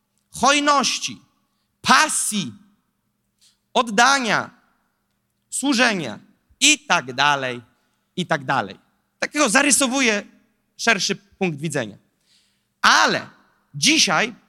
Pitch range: 195-260 Hz